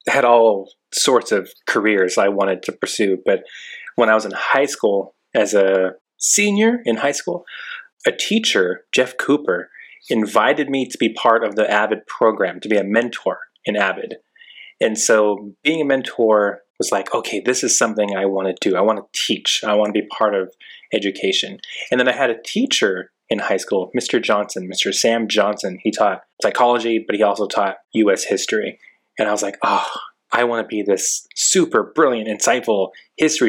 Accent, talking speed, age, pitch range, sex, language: American, 185 wpm, 20-39, 100-125 Hz, male, English